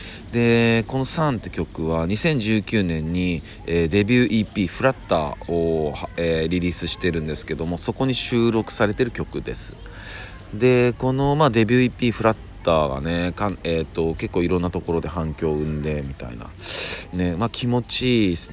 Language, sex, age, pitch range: Japanese, male, 40-59, 80-105 Hz